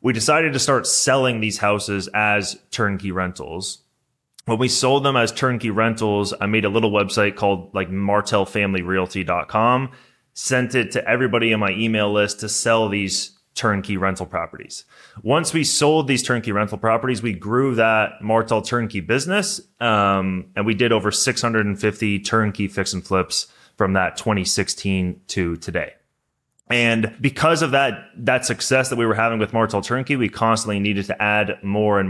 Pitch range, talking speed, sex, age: 100-125 Hz, 165 wpm, male, 20-39